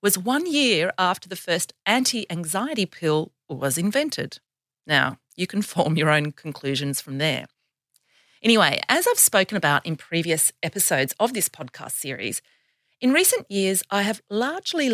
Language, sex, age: English, female, 40-59